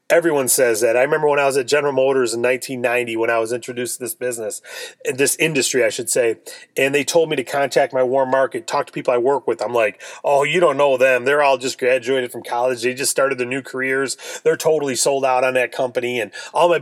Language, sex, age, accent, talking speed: English, male, 30-49, American, 245 wpm